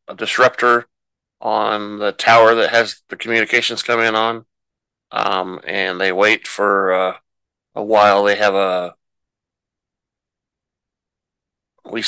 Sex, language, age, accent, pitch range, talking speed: male, English, 30-49, American, 95-115 Hz, 120 wpm